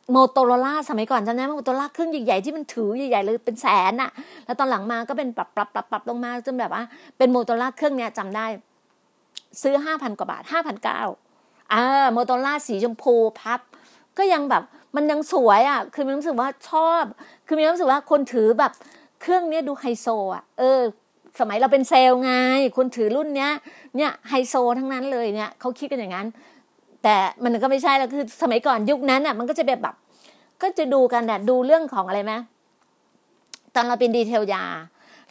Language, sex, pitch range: Thai, female, 235-300 Hz